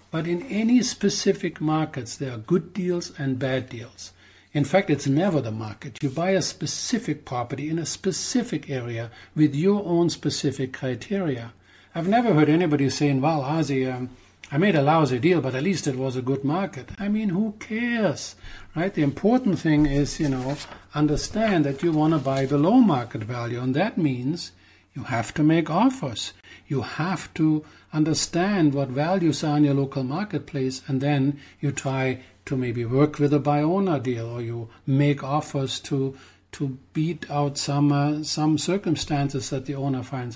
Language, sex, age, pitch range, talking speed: English, male, 60-79, 130-165 Hz, 180 wpm